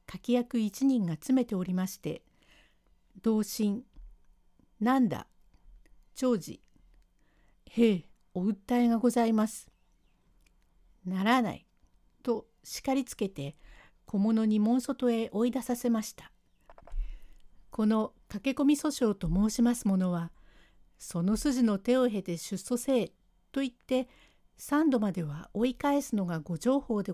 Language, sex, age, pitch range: Japanese, female, 60-79, 190-245 Hz